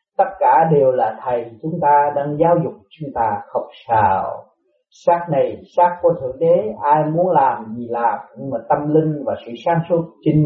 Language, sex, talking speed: Vietnamese, male, 195 wpm